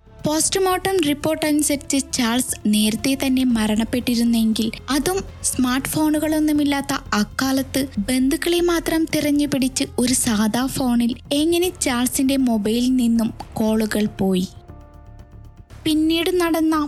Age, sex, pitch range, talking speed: 20-39, female, 230-295 Hz, 90 wpm